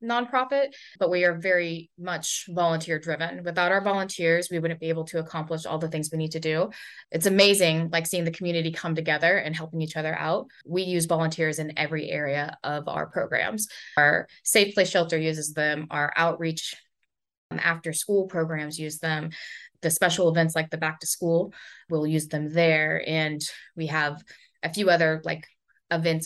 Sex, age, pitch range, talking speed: female, 20-39, 155-175 Hz, 180 wpm